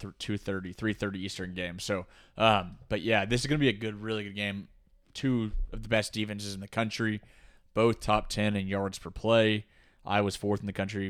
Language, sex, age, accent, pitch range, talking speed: English, male, 20-39, American, 95-110 Hz, 200 wpm